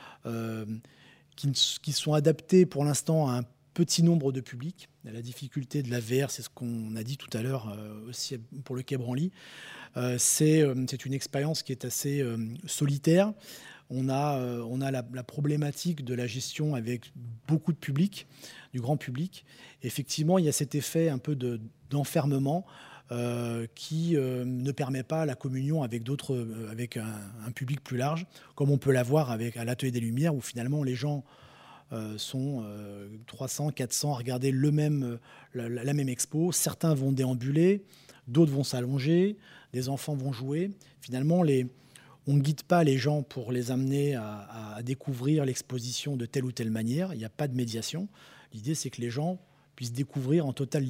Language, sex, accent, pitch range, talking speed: French, male, French, 125-150 Hz, 185 wpm